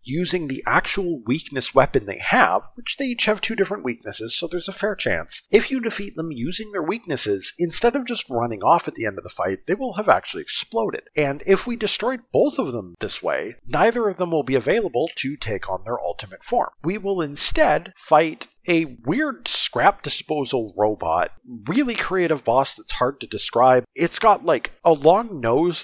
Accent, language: American, English